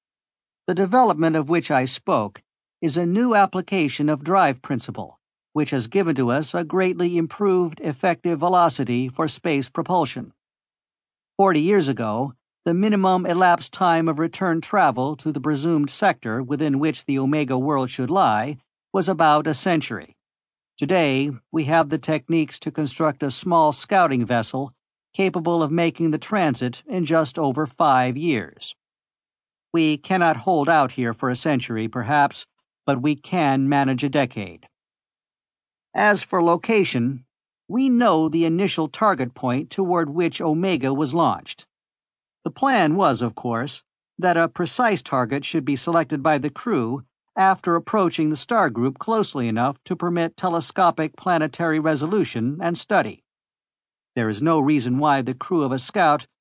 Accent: American